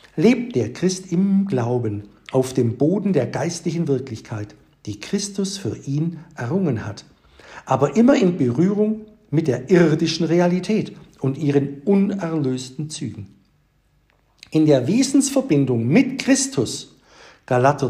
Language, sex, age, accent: German, male, 60-79, German